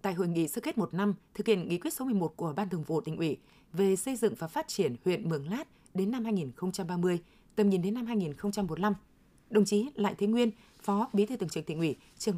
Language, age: Vietnamese, 20-39